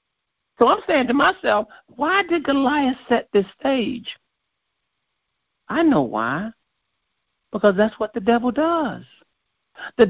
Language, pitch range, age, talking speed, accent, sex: English, 160-260 Hz, 50-69, 125 wpm, American, male